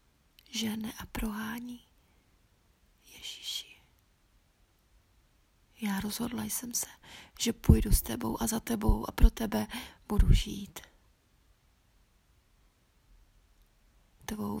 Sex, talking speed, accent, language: female, 85 wpm, native, Czech